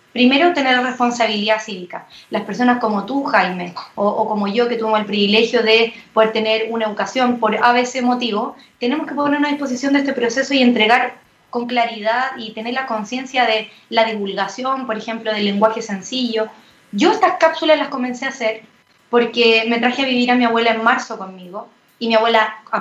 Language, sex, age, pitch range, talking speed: Spanish, female, 20-39, 220-255 Hz, 190 wpm